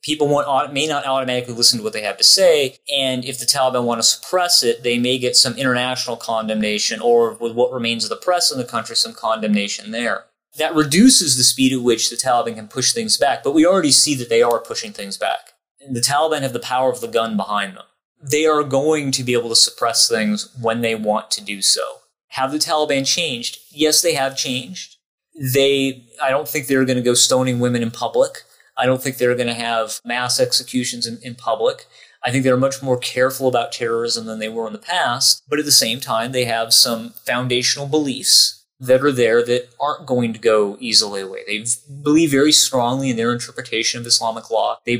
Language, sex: English, male